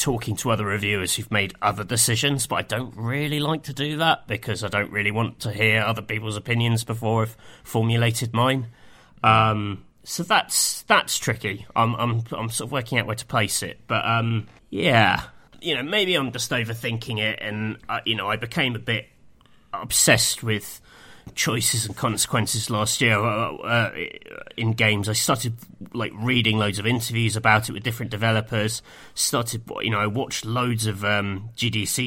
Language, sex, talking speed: English, male, 180 wpm